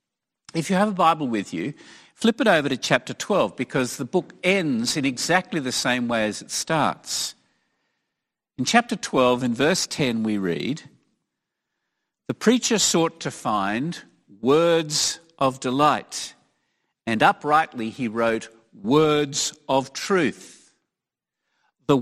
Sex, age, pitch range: male, 50-69, 115-165 Hz